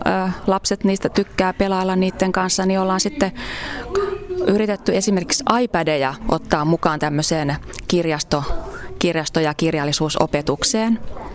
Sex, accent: female, native